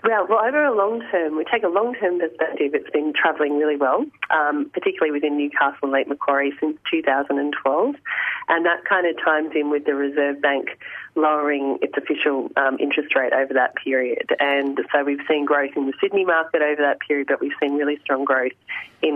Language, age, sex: English, 30-49, female